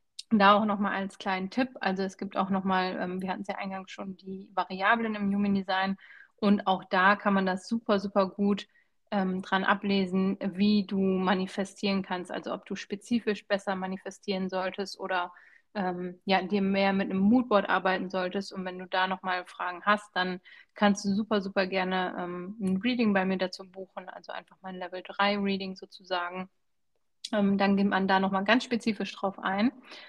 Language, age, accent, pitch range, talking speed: German, 30-49, German, 190-210 Hz, 185 wpm